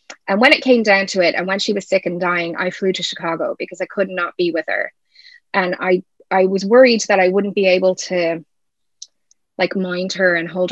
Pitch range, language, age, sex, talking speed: 175-210 Hz, English, 20-39, female, 230 wpm